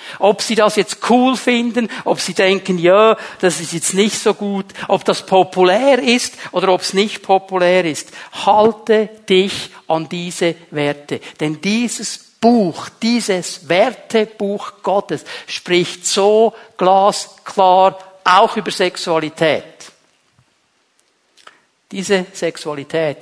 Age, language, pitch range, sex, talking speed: 50-69, German, 175-225 Hz, male, 115 wpm